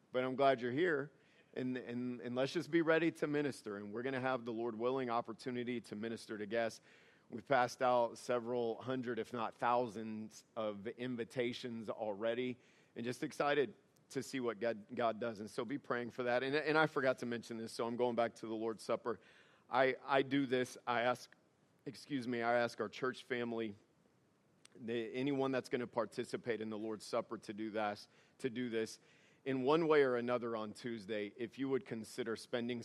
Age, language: 40-59, English